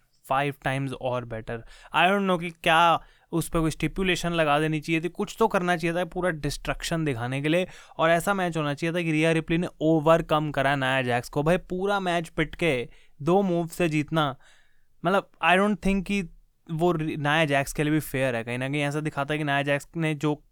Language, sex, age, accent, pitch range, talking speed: Hindi, male, 20-39, native, 145-175 Hz, 215 wpm